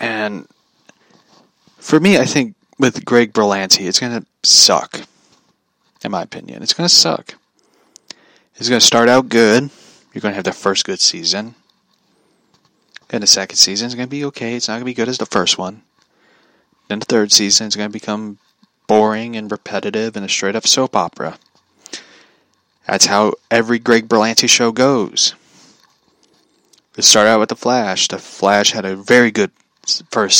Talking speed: 175 wpm